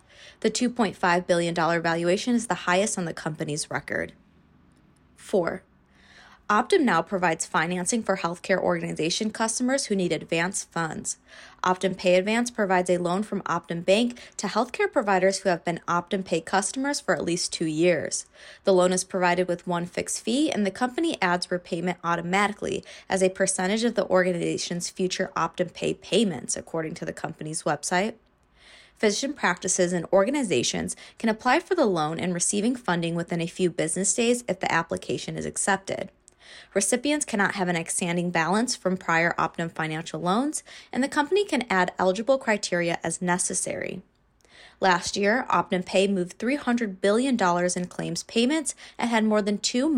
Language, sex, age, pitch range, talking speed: English, female, 20-39, 175-220 Hz, 160 wpm